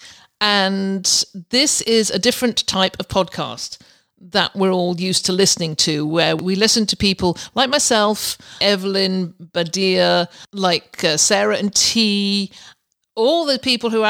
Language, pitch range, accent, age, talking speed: English, 170-215 Hz, British, 50-69, 145 wpm